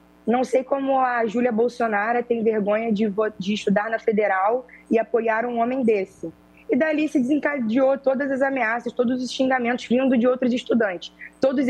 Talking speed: 170 wpm